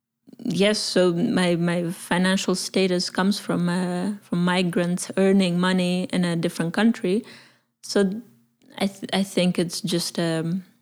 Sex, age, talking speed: female, 20-39, 140 wpm